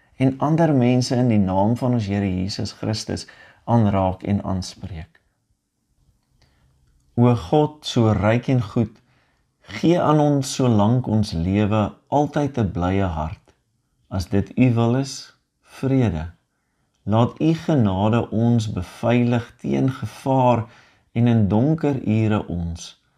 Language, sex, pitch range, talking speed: English, male, 105-140 Hz, 130 wpm